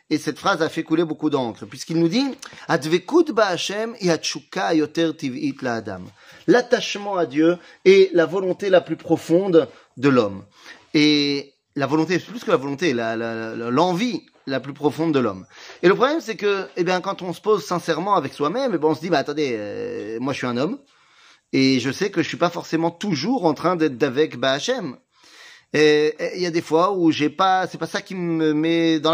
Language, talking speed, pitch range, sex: French, 205 wpm, 140-190 Hz, male